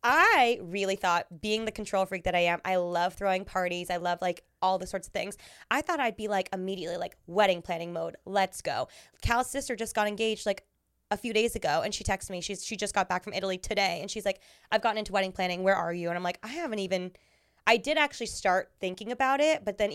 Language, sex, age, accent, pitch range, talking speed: English, female, 20-39, American, 180-220 Hz, 250 wpm